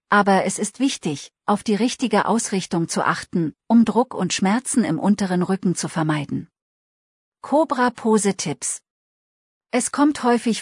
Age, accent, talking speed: 40-59, German, 140 wpm